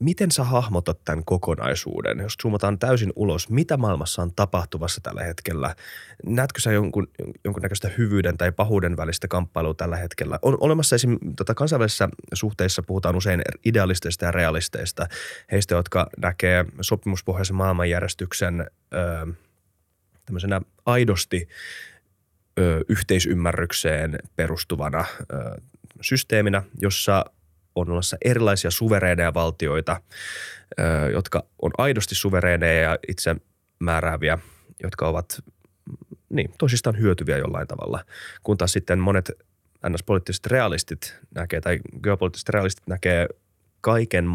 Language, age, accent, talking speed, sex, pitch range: Finnish, 20-39, native, 110 wpm, male, 85-105 Hz